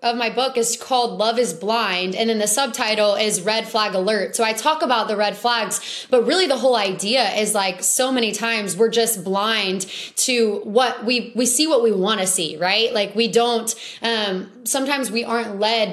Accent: American